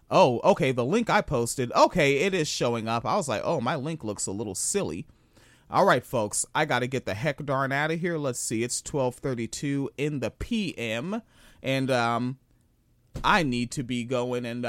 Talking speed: 200 wpm